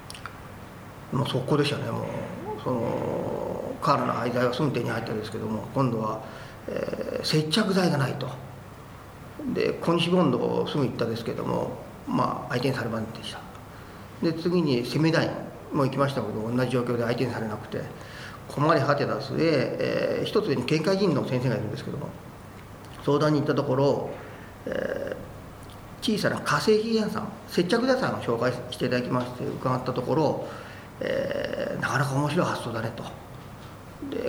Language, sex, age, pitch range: Japanese, male, 40-59, 115-165 Hz